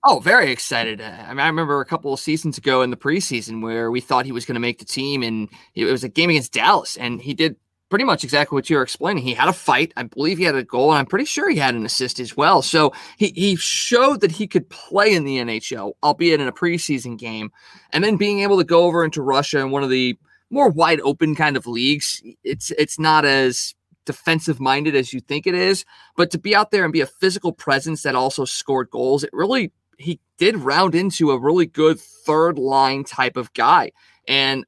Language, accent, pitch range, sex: English, American, 135-170 Hz, male